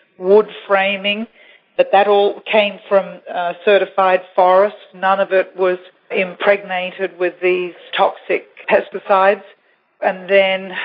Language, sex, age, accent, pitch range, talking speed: English, female, 40-59, Australian, 180-195 Hz, 115 wpm